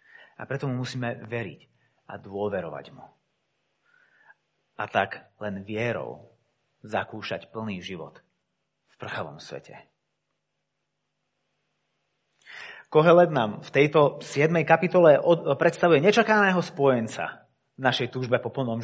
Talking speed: 100 wpm